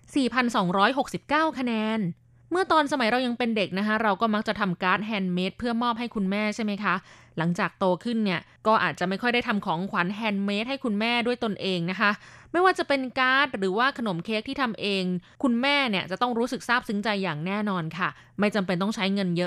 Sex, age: female, 20-39